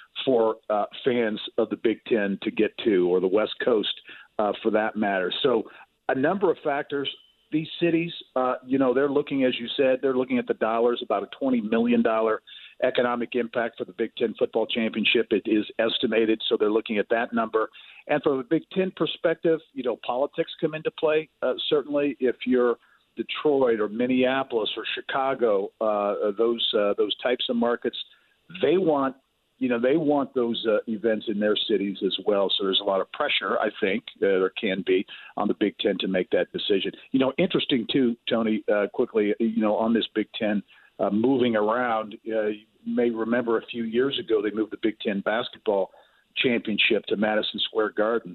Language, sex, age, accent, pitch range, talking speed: English, male, 50-69, American, 110-145 Hz, 195 wpm